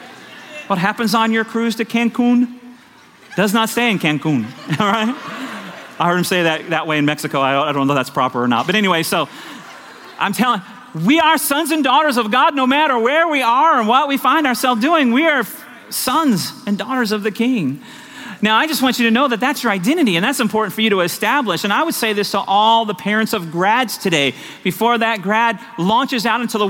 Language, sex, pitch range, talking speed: English, male, 150-240 Hz, 225 wpm